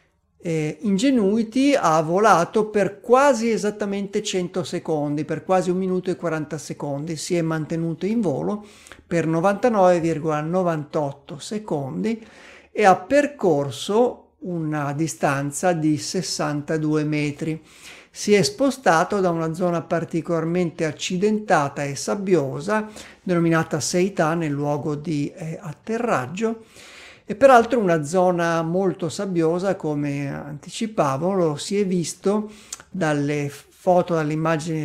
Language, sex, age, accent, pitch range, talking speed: Italian, male, 50-69, native, 155-190 Hz, 110 wpm